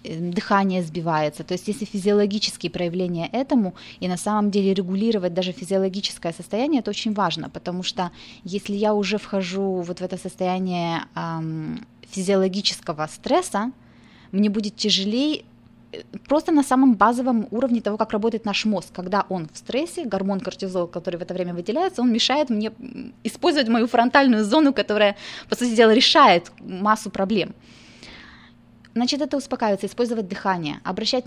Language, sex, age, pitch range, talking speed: Russian, female, 20-39, 180-225 Hz, 145 wpm